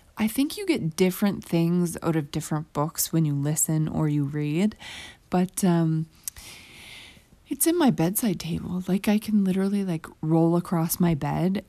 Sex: female